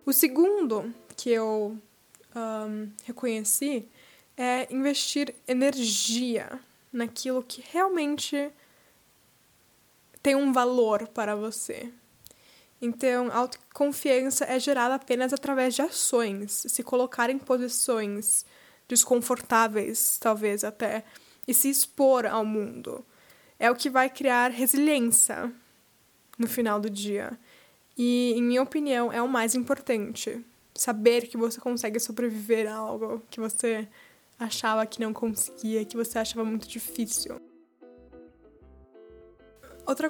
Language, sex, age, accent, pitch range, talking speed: Portuguese, female, 10-29, Brazilian, 225-265 Hz, 110 wpm